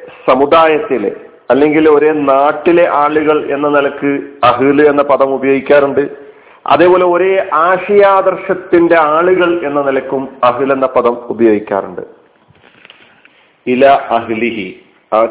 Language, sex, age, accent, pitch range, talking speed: Malayalam, male, 40-59, native, 145-195 Hz, 95 wpm